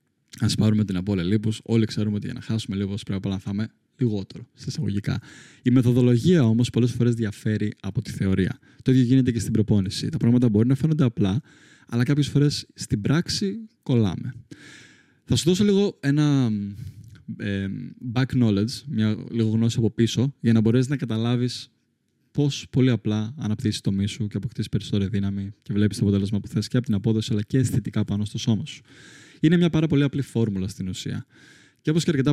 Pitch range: 105-135 Hz